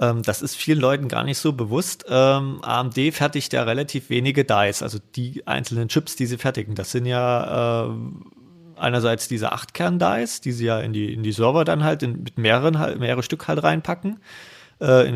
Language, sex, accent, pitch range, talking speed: German, male, German, 115-135 Hz, 195 wpm